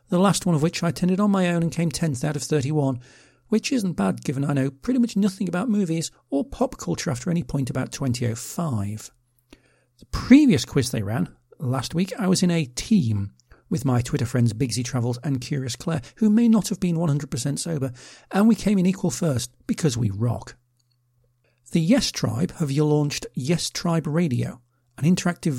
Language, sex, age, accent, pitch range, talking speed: English, male, 40-59, British, 125-180 Hz, 195 wpm